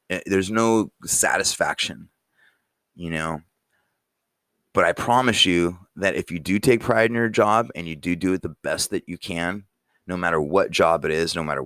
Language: English